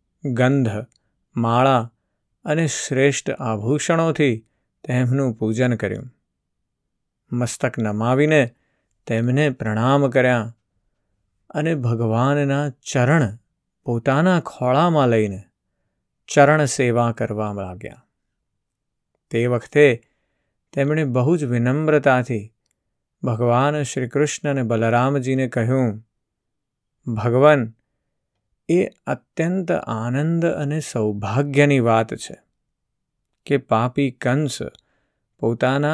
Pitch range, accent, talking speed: 115-145 Hz, native, 75 wpm